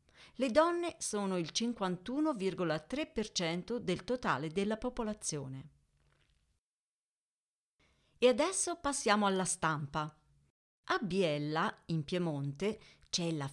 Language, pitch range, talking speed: Italian, 155-230 Hz, 90 wpm